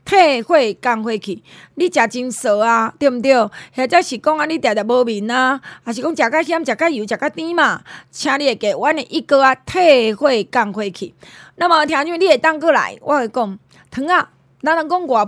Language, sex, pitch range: Chinese, female, 225-310 Hz